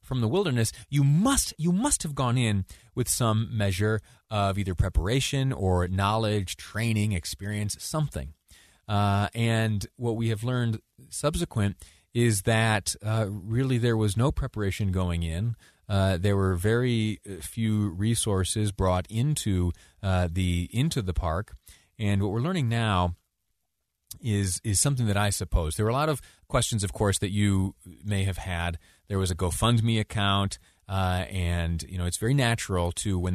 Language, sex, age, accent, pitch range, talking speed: English, male, 30-49, American, 95-125 Hz, 160 wpm